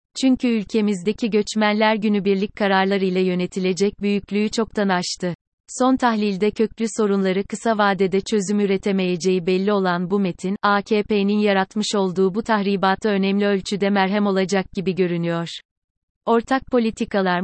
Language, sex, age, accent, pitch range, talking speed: Turkish, female, 30-49, native, 190-220 Hz, 120 wpm